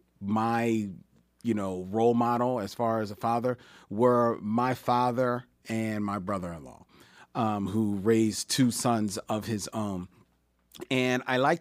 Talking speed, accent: 140 wpm, American